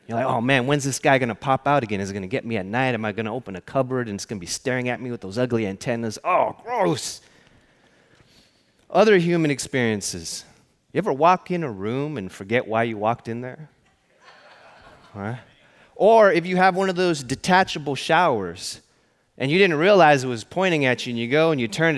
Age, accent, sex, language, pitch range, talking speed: 30-49, American, male, English, 115-150 Hz, 225 wpm